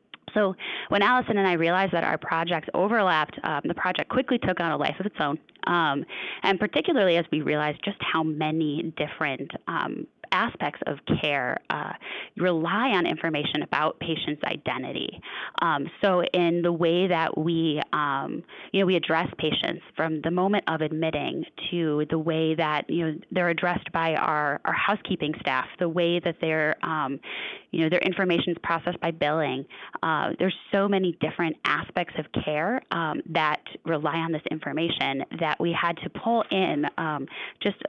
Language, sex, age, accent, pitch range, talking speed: English, female, 20-39, American, 155-185 Hz, 160 wpm